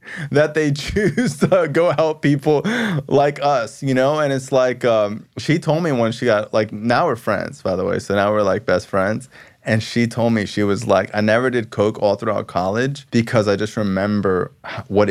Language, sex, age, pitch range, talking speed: English, male, 20-39, 95-120 Hz, 210 wpm